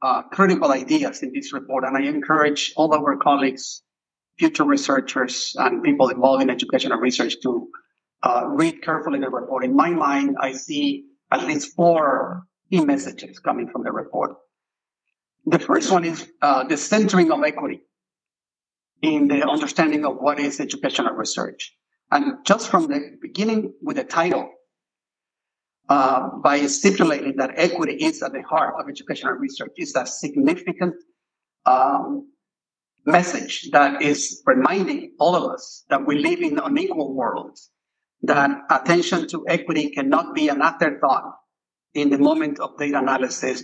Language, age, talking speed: English, 50-69, 150 wpm